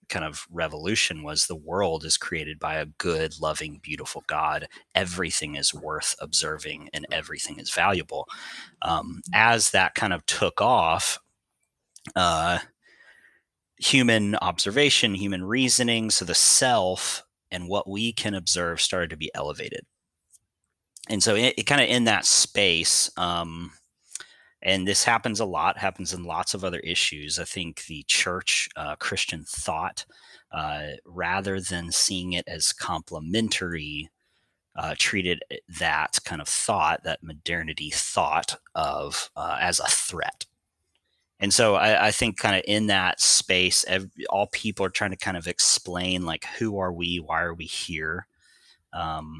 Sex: male